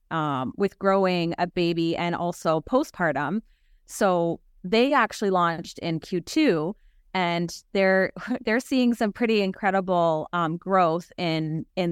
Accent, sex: American, female